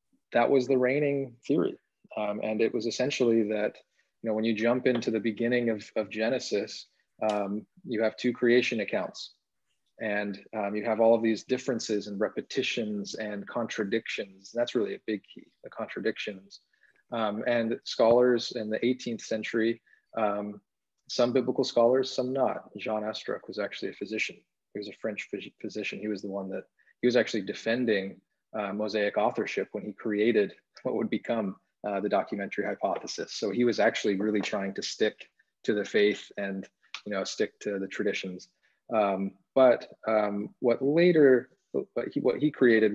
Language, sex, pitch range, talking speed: English, male, 105-120 Hz, 170 wpm